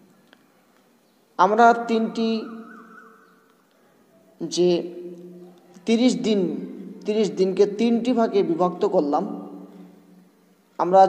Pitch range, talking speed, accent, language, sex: 180-215 Hz, 65 wpm, native, Bengali, male